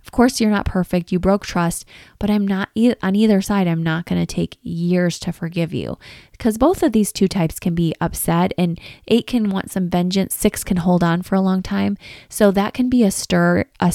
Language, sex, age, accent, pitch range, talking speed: English, female, 20-39, American, 165-200 Hz, 230 wpm